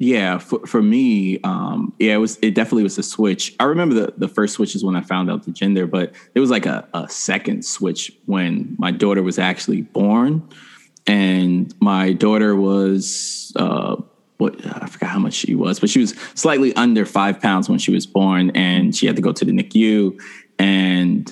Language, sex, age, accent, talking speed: English, male, 20-39, American, 205 wpm